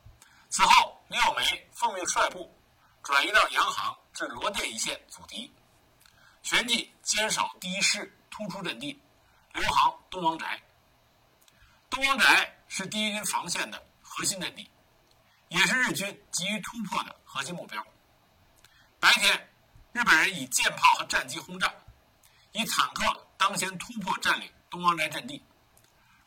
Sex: male